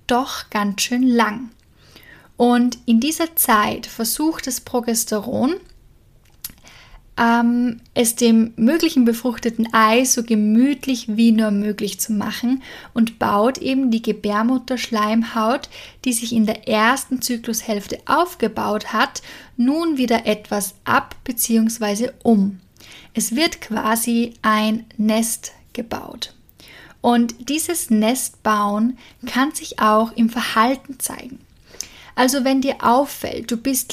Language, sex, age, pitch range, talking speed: German, female, 10-29, 220-260 Hz, 115 wpm